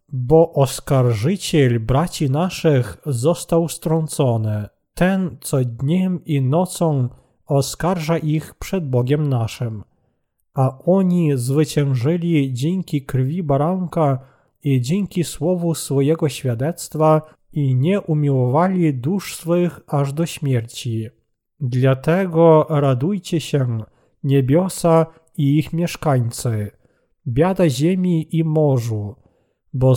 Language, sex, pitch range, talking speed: Polish, male, 130-170 Hz, 95 wpm